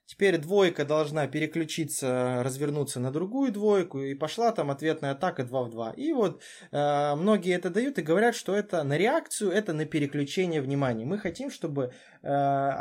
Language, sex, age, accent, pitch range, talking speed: Russian, male, 20-39, native, 135-195 Hz, 170 wpm